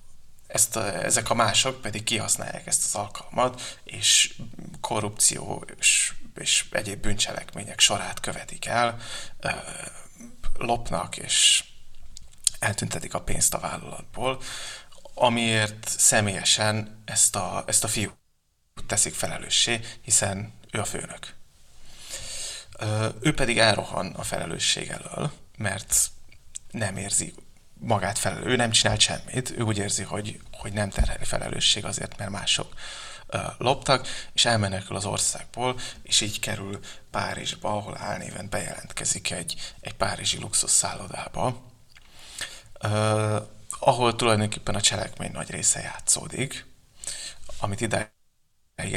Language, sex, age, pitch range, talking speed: Hungarian, male, 30-49, 100-115 Hz, 115 wpm